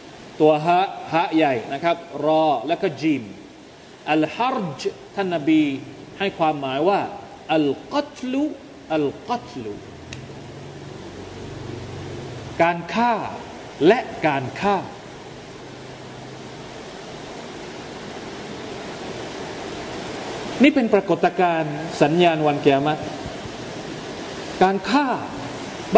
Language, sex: Thai, male